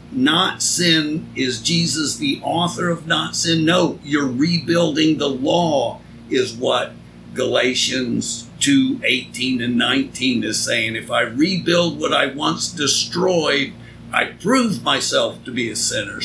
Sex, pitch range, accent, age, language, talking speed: male, 135-175 Hz, American, 50-69, English, 135 wpm